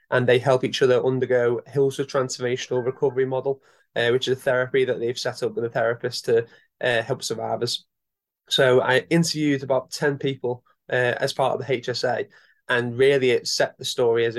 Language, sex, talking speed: English, male, 190 wpm